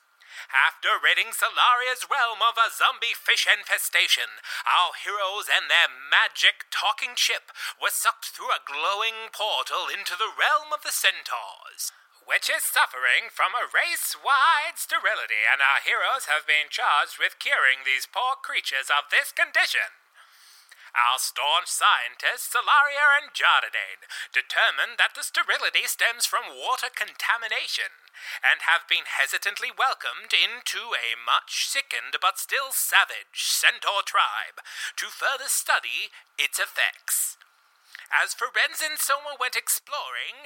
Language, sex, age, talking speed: English, male, 30-49, 125 wpm